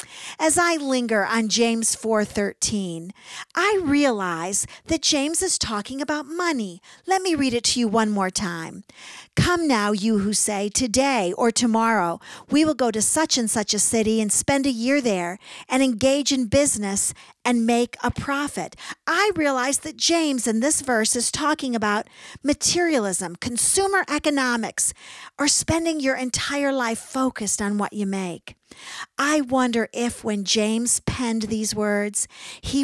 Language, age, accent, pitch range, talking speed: English, 50-69, American, 210-280 Hz, 155 wpm